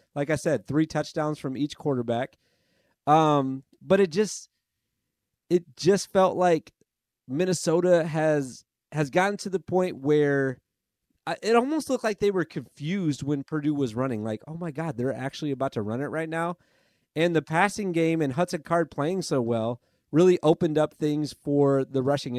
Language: English